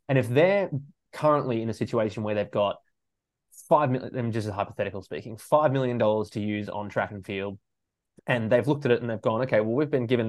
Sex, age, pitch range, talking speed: male, 20-39, 105-135 Hz, 210 wpm